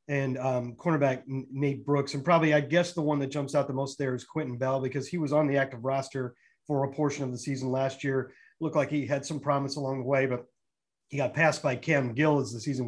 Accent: American